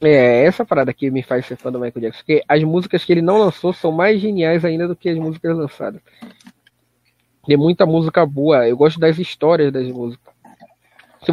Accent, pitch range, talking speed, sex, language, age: Brazilian, 150-190 Hz, 205 wpm, male, Portuguese, 20-39